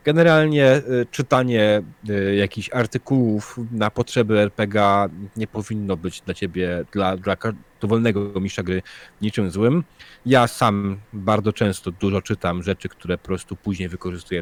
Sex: male